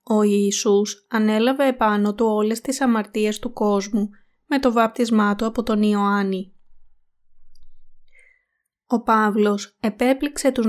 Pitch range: 205-240 Hz